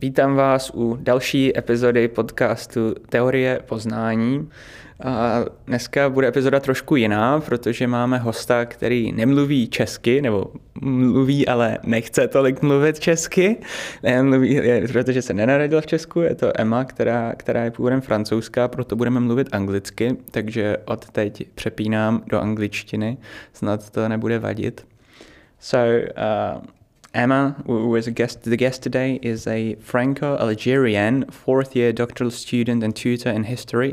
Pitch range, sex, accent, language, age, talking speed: 110-130 Hz, male, native, Czech, 20-39, 135 wpm